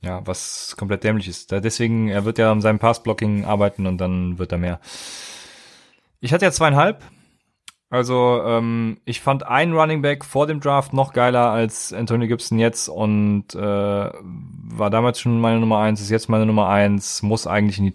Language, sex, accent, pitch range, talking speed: German, male, German, 105-130 Hz, 185 wpm